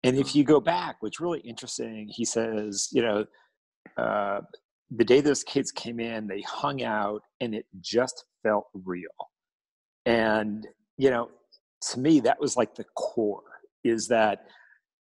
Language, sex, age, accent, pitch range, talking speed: English, male, 40-59, American, 110-135 Hz, 155 wpm